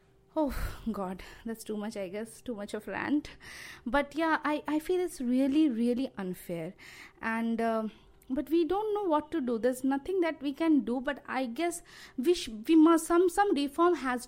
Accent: native